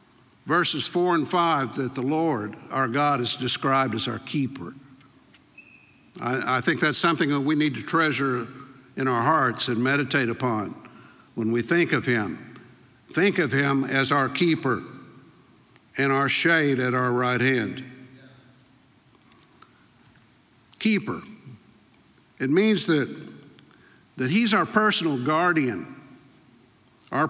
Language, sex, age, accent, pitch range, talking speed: English, male, 60-79, American, 130-175 Hz, 125 wpm